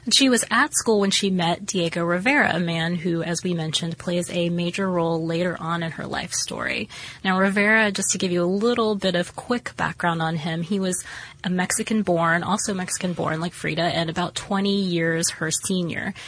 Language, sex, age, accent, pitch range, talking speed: English, female, 20-39, American, 170-205 Hz, 205 wpm